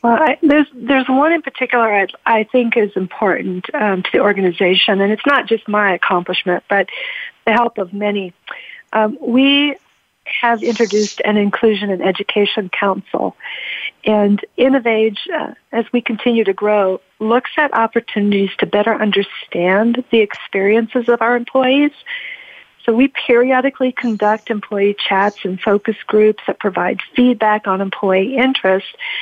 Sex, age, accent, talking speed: female, 40-59, American, 145 wpm